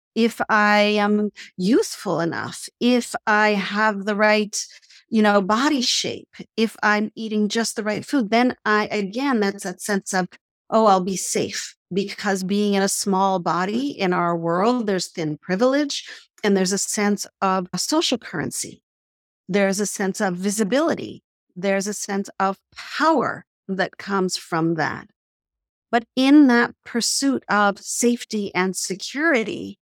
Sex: female